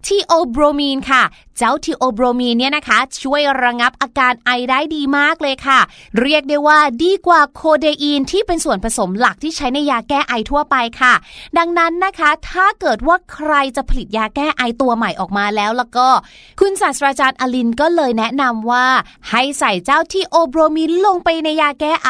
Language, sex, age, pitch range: Thai, female, 20-39, 255-330 Hz